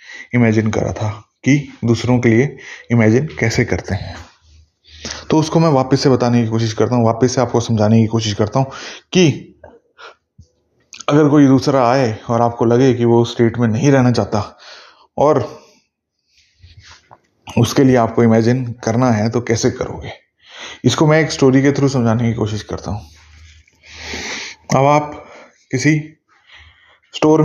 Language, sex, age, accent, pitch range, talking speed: Hindi, male, 20-39, native, 100-130 Hz, 135 wpm